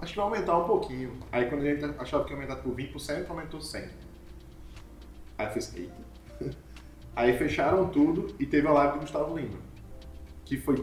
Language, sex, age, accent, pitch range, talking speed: Portuguese, male, 20-39, Brazilian, 105-155 Hz, 175 wpm